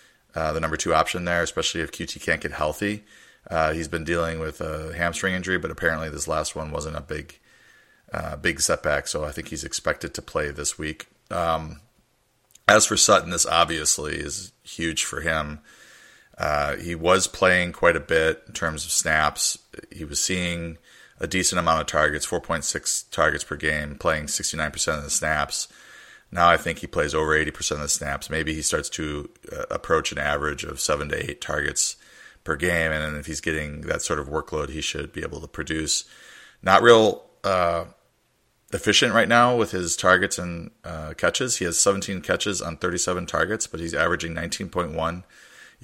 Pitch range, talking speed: 80-90 Hz, 185 wpm